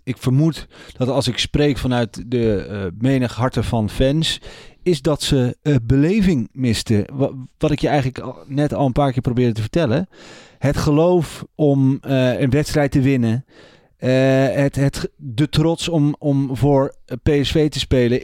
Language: Dutch